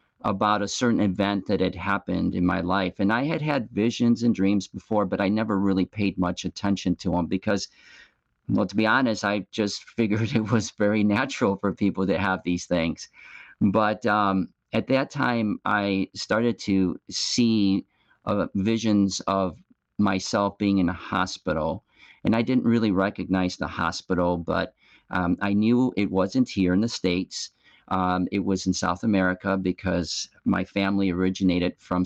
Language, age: English, 50-69